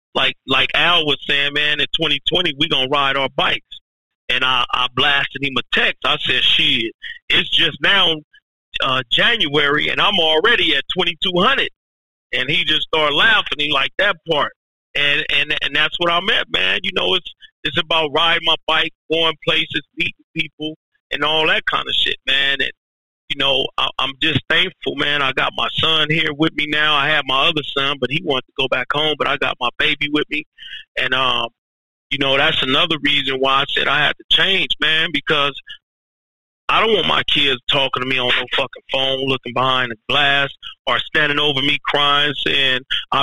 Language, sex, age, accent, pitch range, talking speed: English, male, 40-59, American, 140-160 Hz, 200 wpm